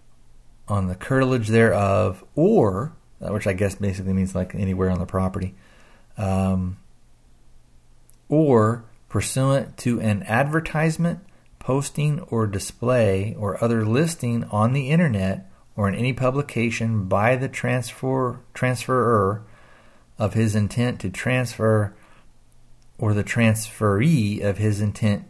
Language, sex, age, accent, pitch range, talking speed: English, male, 40-59, American, 95-115 Hz, 115 wpm